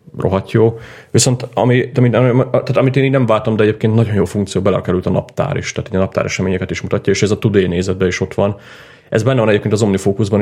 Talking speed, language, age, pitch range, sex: 220 wpm, Hungarian, 30-49, 95-110 Hz, male